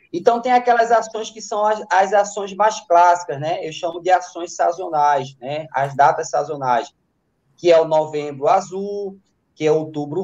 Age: 20-39